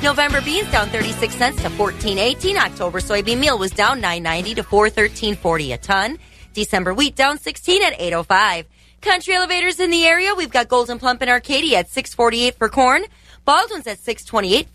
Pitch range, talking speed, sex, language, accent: 195-275 Hz, 165 wpm, female, English, American